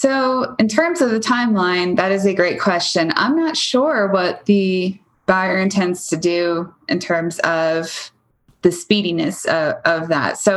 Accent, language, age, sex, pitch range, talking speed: American, English, 20-39, female, 170-200 Hz, 165 wpm